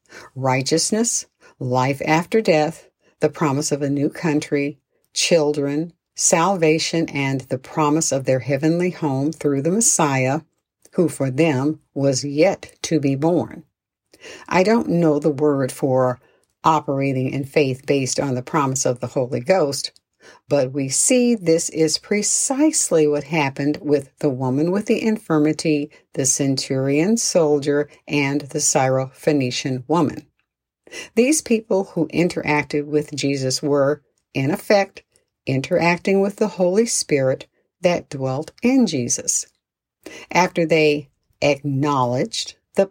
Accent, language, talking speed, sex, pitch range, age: American, English, 125 wpm, female, 140-170 Hz, 60-79